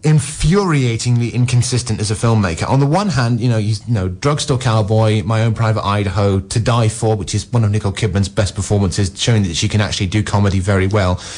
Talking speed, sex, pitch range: 200 wpm, male, 100-120 Hz